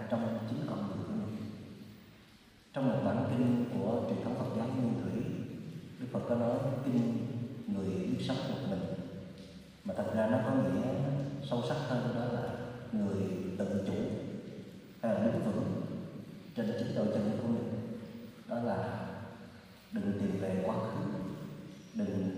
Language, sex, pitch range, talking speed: Vietnamese, male, 110-130 Hz, 155 wpm